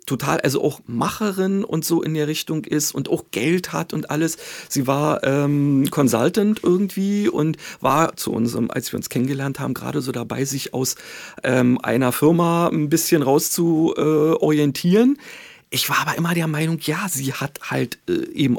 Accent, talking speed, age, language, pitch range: German, 180 wpm, 40-59, German, 140-185 Hz